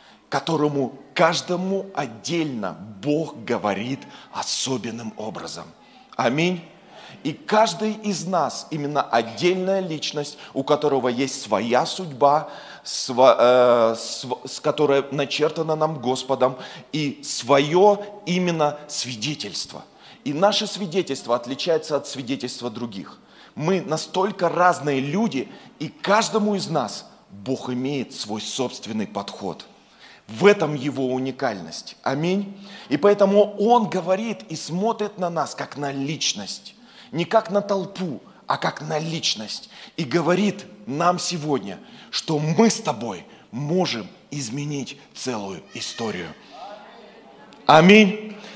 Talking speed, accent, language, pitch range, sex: 105 wpm, native, Russian, 135-185 Hz, male